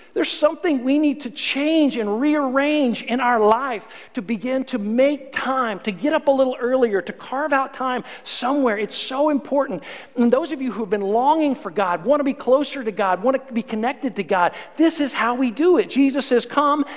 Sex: male